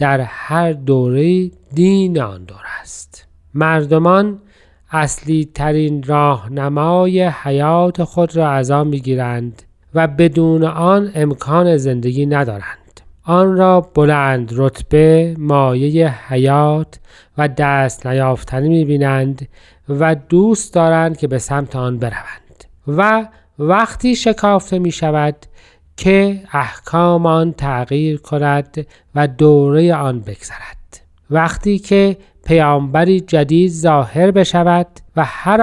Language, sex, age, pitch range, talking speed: Persian, male, 40-59, 135-175 Hz, 105 wpm